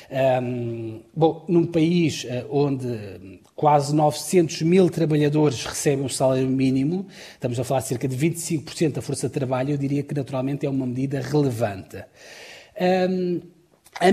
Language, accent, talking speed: Portuguese, Portuguese, 135 wpm